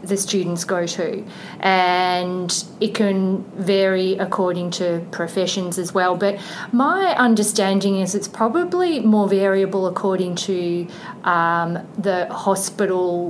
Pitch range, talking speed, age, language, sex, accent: 180-210 Hz, 115 wpm, 30-49, English, female, Australian